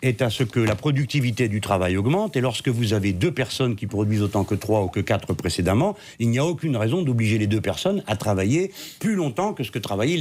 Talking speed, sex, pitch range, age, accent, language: 240 wpm, male, 110-155 Hz, 60-79, French, French